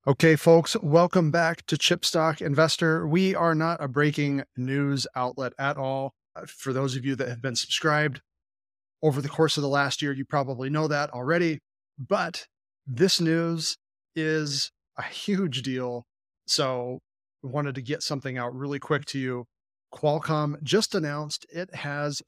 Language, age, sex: English, 30-49, male